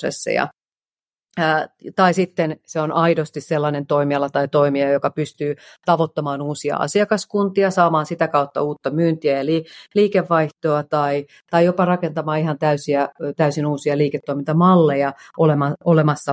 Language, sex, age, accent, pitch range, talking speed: Finnish, female, 40-59, native, 140-165 Hz, 110 wpm